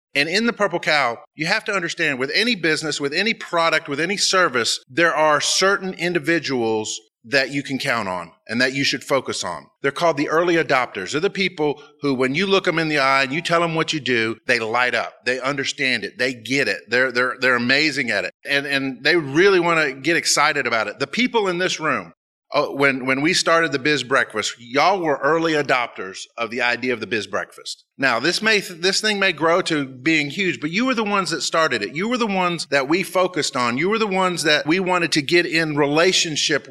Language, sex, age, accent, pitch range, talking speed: English, male, 30-49, American, 135-175 Hz, 230 wpm